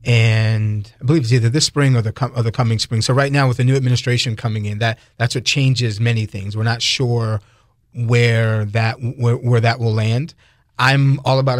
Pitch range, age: 110-125 Hz, 30-49